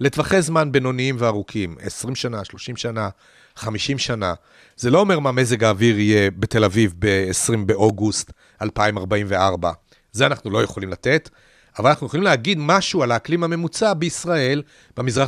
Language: Hebrew